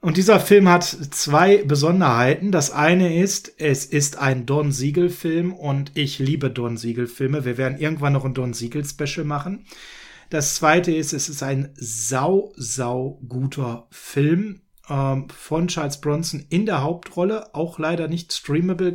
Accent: German